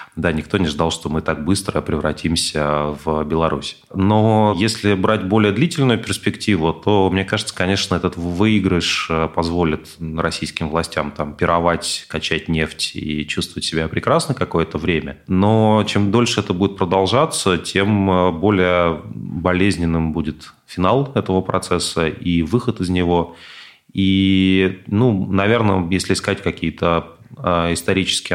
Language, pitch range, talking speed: Russian, 80-95 Hz, 125 wpm